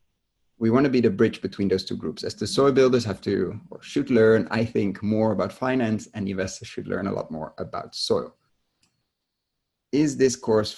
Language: English